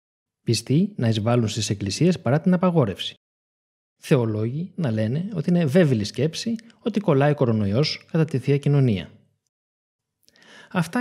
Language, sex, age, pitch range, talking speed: Greek, male, 20-39, 115-175 Hz, 130 wpm